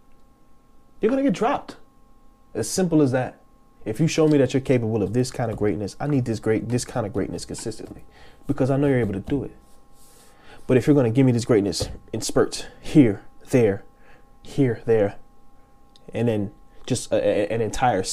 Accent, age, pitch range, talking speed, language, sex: American, 20-39, 110-155 Hz, 190 wpm, English, male